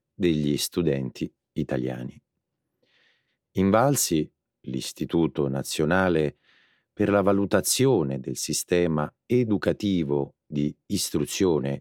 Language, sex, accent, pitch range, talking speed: Italian, male, native, 70-95 Hz, 75 wpm